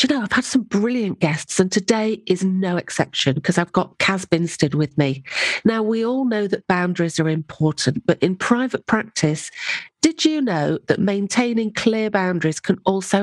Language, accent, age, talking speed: English, British, 40-59, 180 wpm